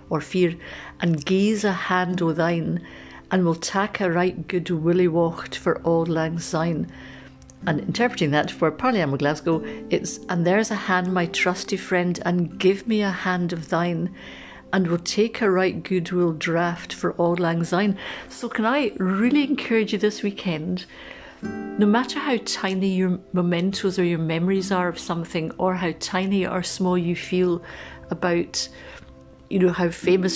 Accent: British